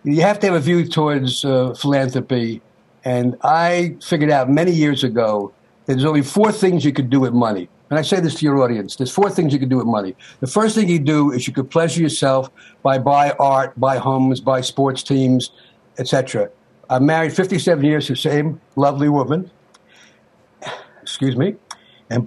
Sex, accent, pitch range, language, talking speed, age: male, American, 135-185 Hz, English, 195 wpm, 60-79